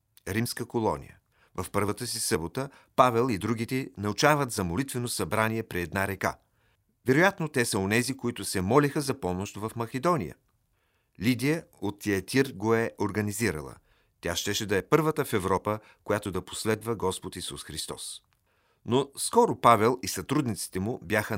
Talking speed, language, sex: 150 wpm, Bulgarian, male